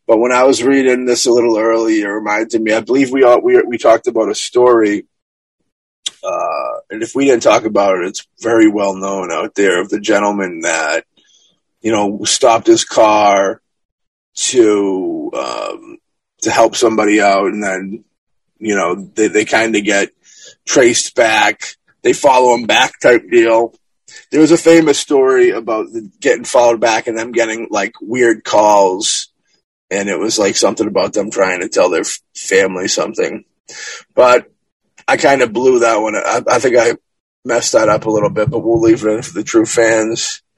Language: English